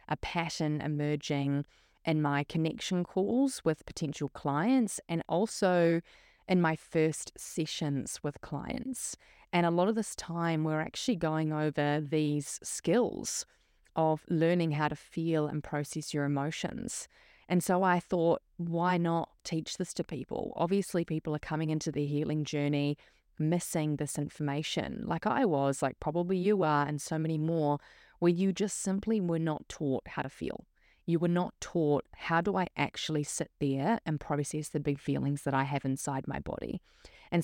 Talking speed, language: 165 wpm, English